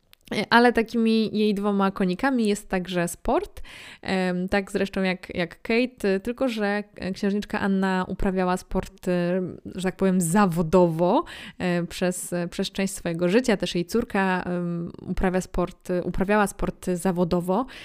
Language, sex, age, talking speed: Polish, female, 20-39, 115 wpm